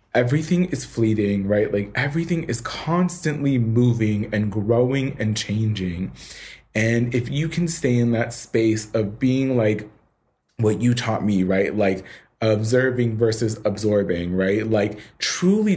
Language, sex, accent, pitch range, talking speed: English, male, American, 110-130 Hz, 135 wpm